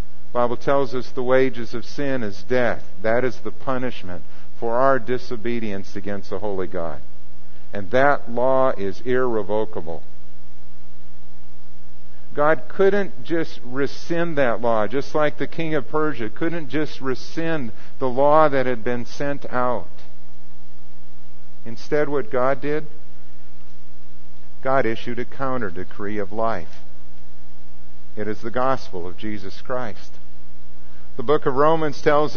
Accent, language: American, English